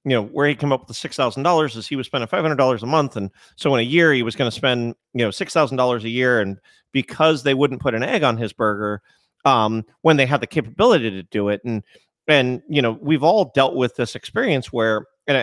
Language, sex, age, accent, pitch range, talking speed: English, male, 40-59, American, 115-150 Hz, 240 wpm